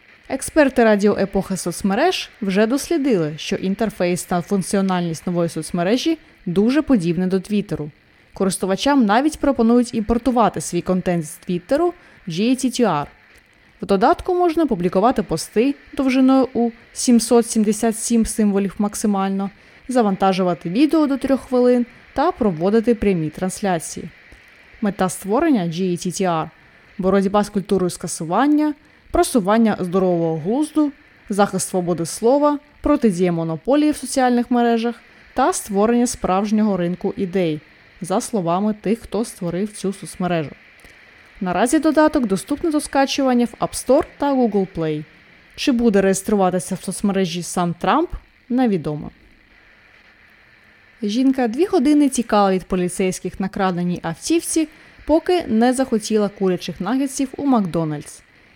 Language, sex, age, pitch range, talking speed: Ukrainian, female, 20-39, 185-255 Hz, 115 wpm